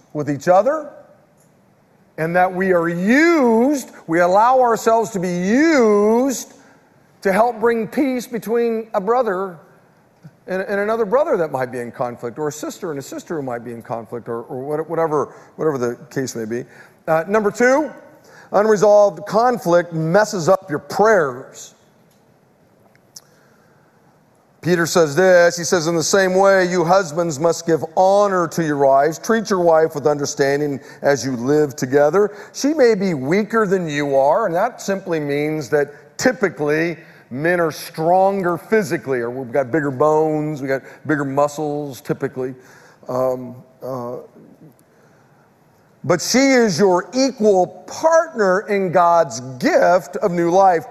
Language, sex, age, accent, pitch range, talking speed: English, male, 50-69, American, 150-215 Hz, 145 wpm